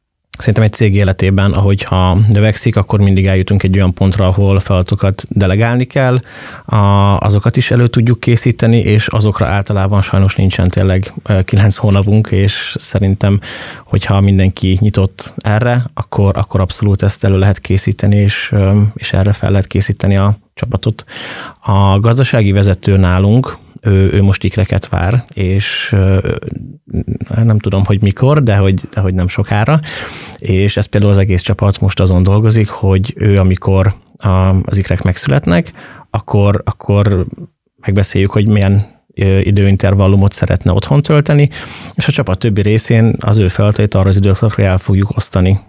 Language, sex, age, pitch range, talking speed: Hungarian, male, 30-49, 95-110 Hz, 145 wpm